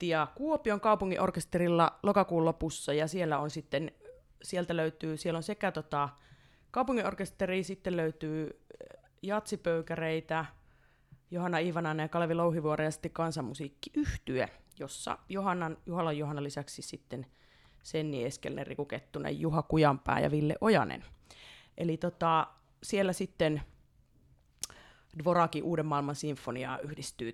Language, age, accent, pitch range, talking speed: Finnish, 30-49, native, 145-185 Hz, 110 wpm